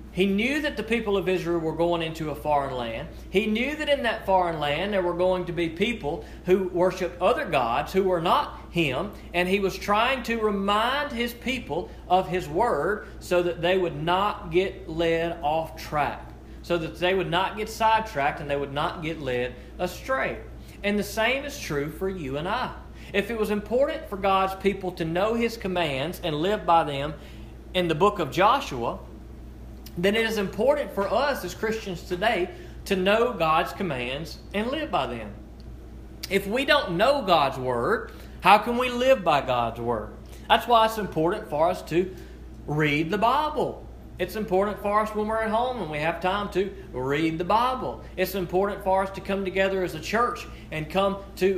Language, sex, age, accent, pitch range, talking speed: English, male, 40-59, American, 170-215 Hz, 195 wpm